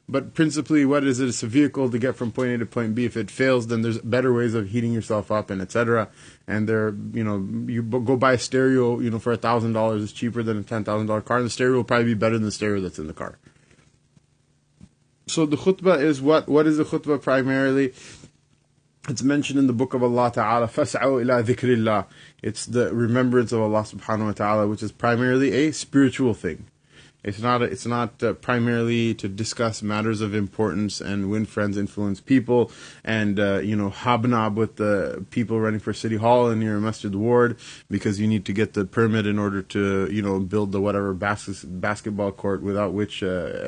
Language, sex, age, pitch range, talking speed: English, male, 20-39, 105-125 Hz, 205 wpm